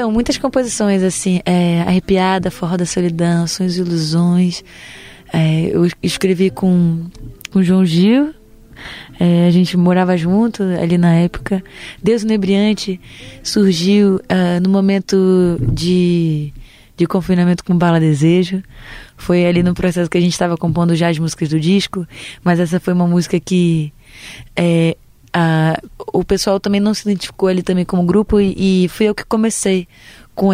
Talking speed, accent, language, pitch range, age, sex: 155 wpm, Brazilian, Portuguese, 170-185 Hz, 20-39, female